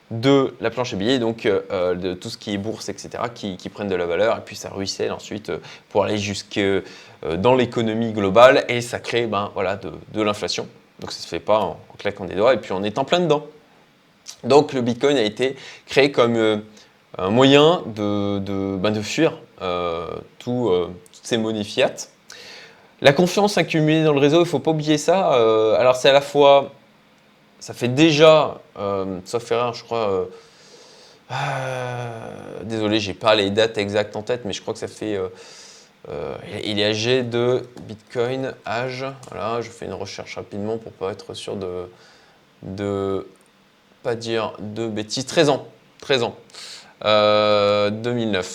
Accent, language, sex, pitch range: French, French, male, 105-135 Hz